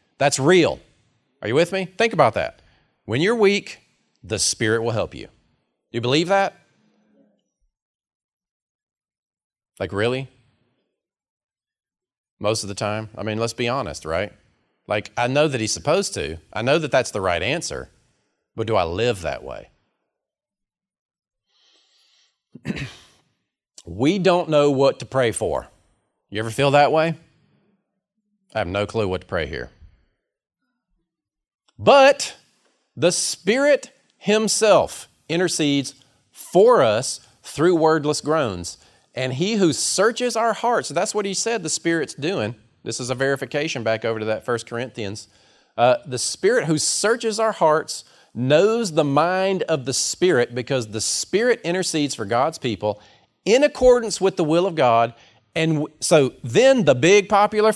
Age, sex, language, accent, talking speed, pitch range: 40-59, male, English, American, 145 wpm, 115-190 Hz